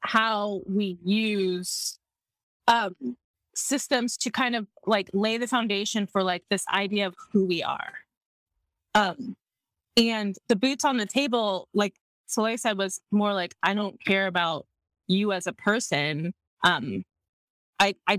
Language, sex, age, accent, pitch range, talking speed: English, female, 20-39, American, 185-215 Hz, 150 wpm